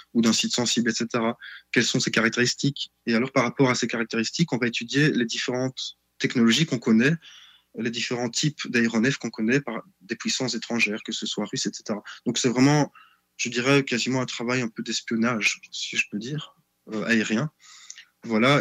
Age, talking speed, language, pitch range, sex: 20-39, 185 wpm, French, 110-130 Hz, male